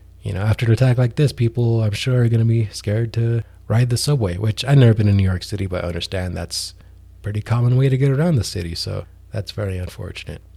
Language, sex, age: English, male, 20-39